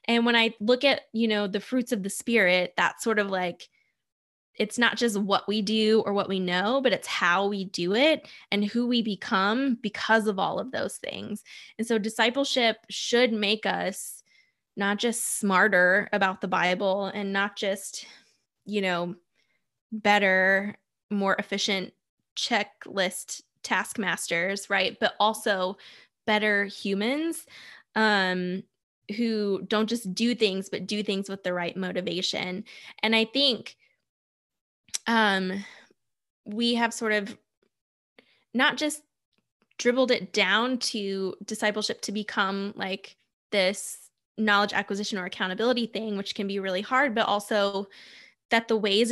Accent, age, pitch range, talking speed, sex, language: American, 10-29, 195-230 Hz, 140 wpm, female, English